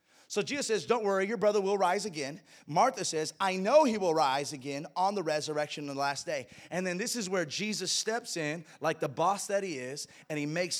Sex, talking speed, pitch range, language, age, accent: male, 235 wpm, 165-255 Hz, English, 30-49, American